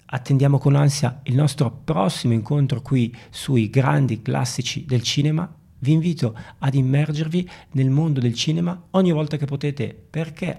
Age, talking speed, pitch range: 40-59, 145 wpm, 120-155 Hz